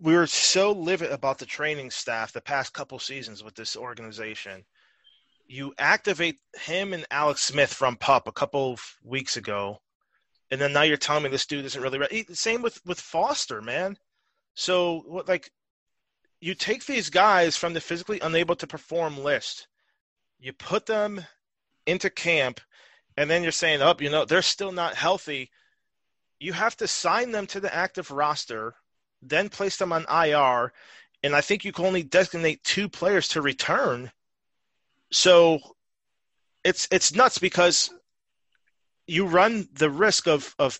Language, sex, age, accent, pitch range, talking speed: English, male, 30-49, American, 135-180 Hz, 160 wpm